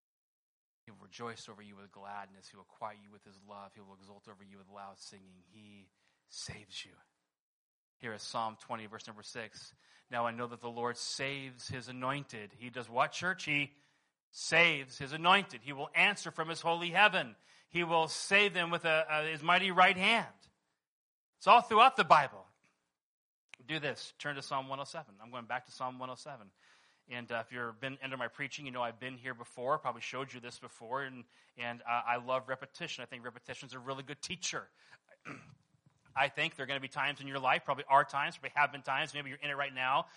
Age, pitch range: 30-49, 120-160 Hz